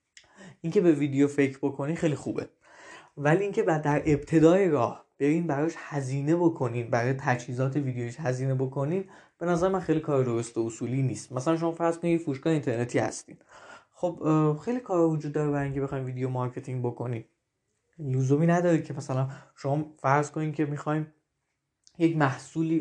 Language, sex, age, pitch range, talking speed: Persian, male, 20-39, 130-160 Hz, 165 wpm